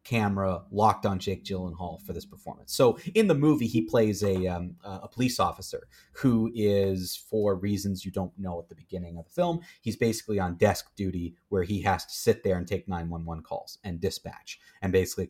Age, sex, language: 30-49, male, English